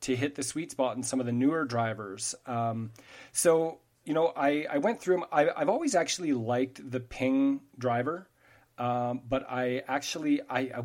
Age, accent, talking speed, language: 30-49, American, 185 wpm, English